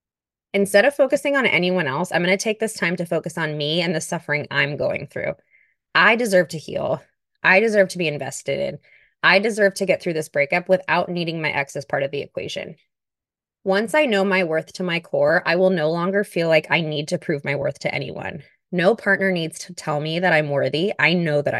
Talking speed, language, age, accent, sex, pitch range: 230 wpm, English, 20-39, American, female, 145-185 Hz